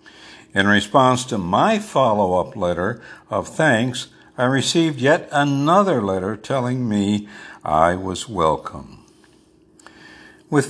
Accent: American